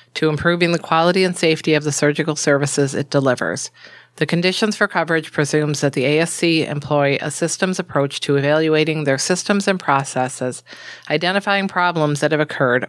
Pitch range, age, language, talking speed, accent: 145-175 Hz, 40-59, English, 165 wpm, American